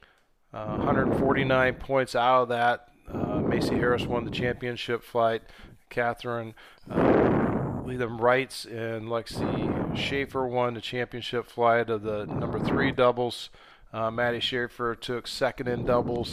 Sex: male